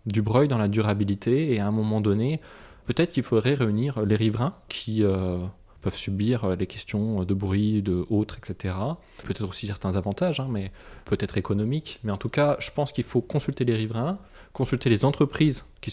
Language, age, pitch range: French, 20-39, 105-130 Hz